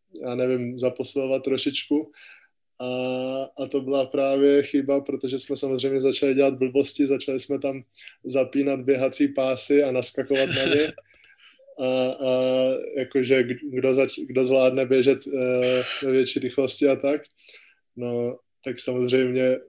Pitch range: 130-140 Hz